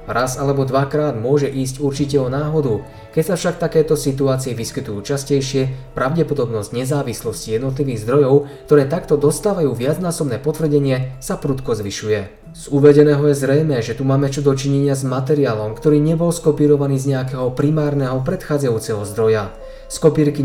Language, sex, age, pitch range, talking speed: Slovak, male, 20-39, 130-150 Hz, 140 wpm